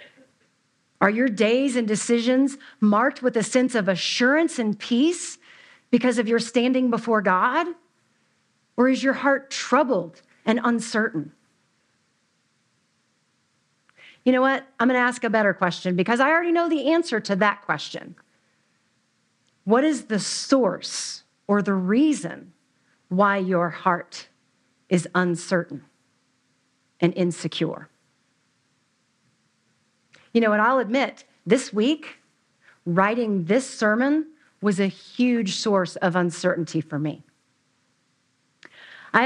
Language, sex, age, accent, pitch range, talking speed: English, female, 50-69, American, 190-260 Hz, 120 wpm